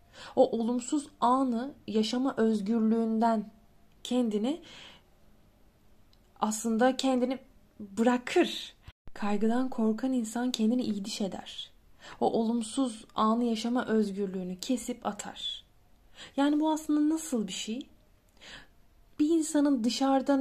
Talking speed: 90 wpm